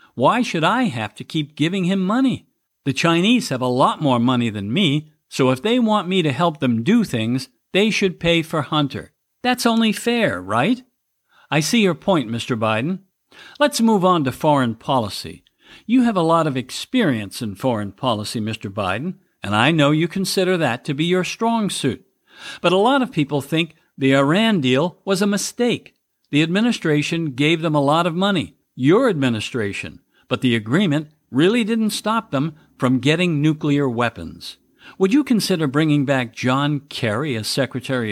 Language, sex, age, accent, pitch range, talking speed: English, male, 60-79, American, 130-190 Hz, 180 wpm